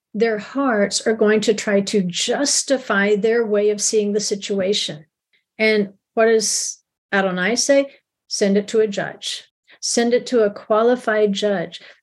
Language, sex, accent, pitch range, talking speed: English, female, American, 200-240 Hz, 150 wpm